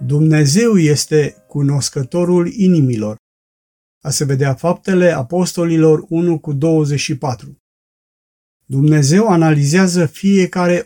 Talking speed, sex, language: 85 wpm, male, Romanian